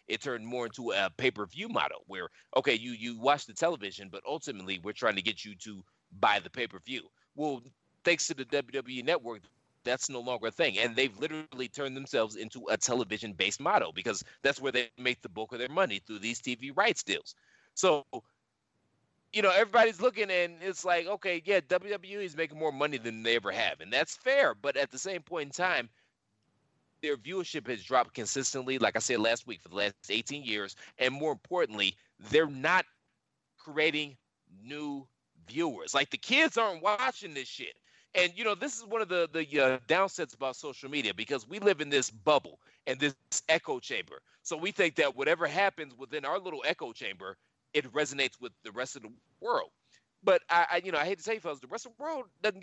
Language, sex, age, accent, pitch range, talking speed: English, male, 30-49, American, 125-195 Hz, 205 wpm